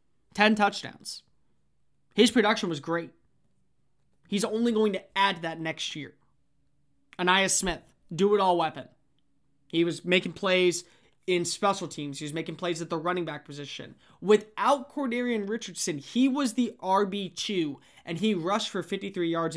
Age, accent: 20-39, American